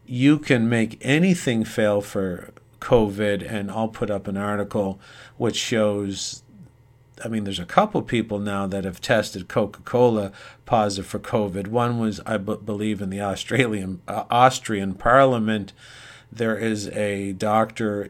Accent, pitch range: American, 105-125 Hz